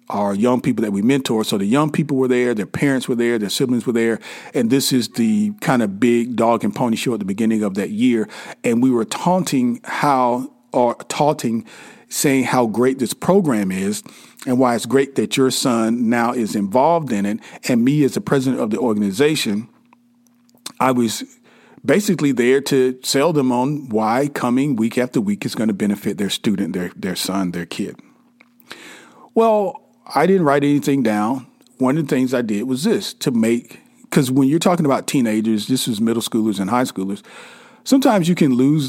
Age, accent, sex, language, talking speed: 40-59, American, male, English, 195 wpm